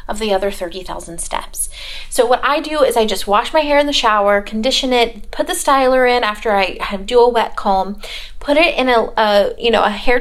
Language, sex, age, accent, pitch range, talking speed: English, female, 30-49, American, 210-285 Hz, 235 wpm